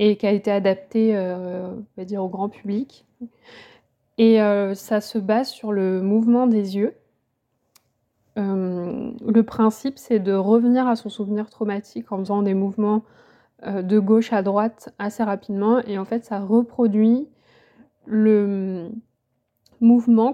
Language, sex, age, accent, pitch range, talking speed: French, female, 20-39, French, 200-235 Hz, 150 wpm